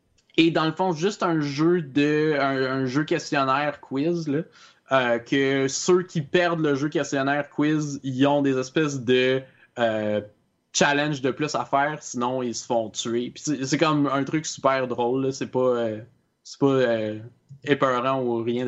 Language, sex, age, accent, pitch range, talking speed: French, male, 20-39, Canadian, 120-150 Hz, 185 wpm